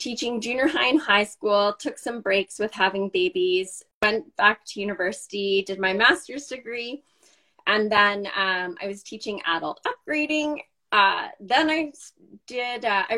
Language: English